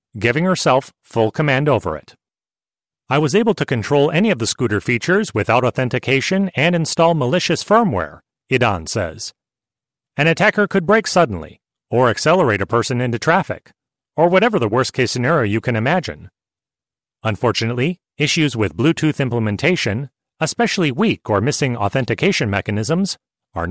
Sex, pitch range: male, 115-165 Hz